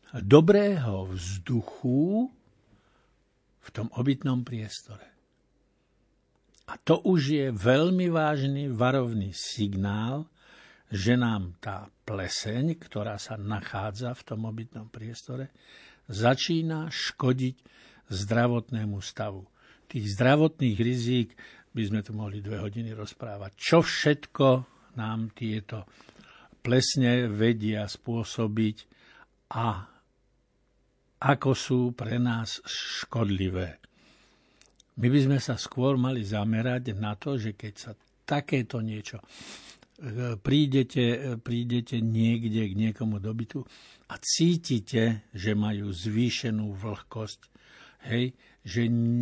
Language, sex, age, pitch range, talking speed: Slovak, male, 60-79, 110-130 Hz, 95 wpm